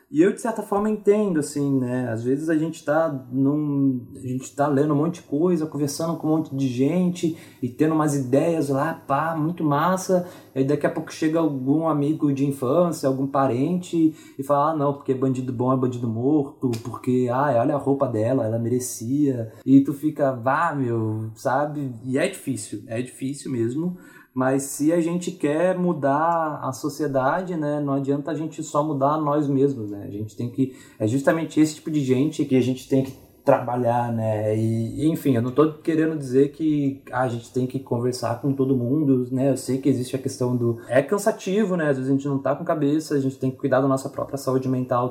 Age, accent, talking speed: 20-39, Brazilian, 215 wpm